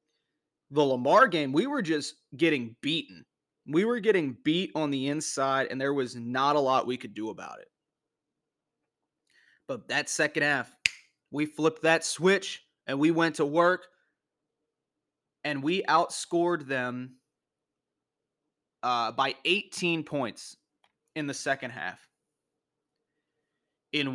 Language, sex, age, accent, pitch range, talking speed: English, male, 30-49, American, 135-165 Hz, 130 wpm